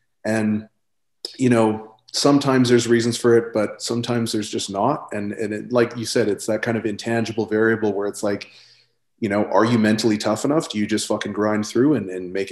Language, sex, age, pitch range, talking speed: English, male, 30-49, 110-130 Hz, 205 wpm